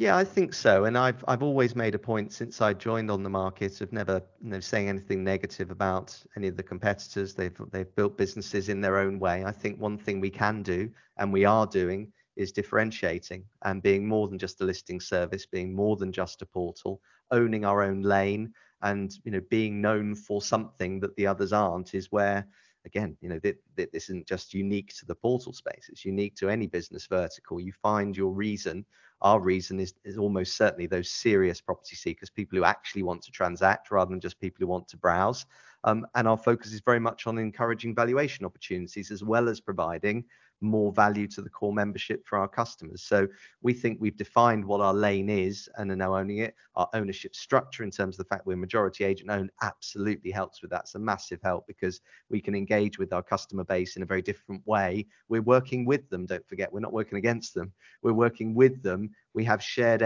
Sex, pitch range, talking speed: male, 95-110 Hz, 215 wpm